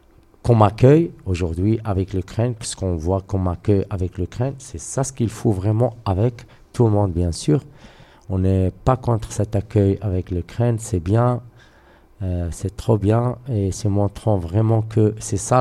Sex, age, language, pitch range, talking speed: male, 50-69, French, 95-115 Hz, 180 wpm